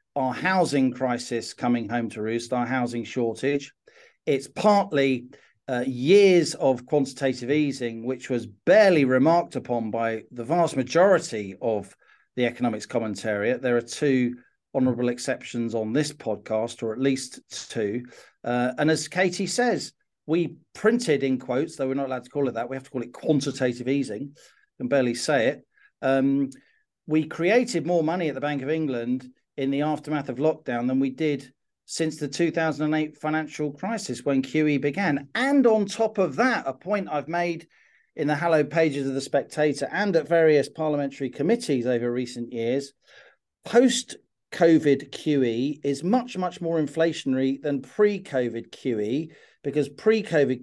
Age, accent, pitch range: 40-59, British, 130-165 Hz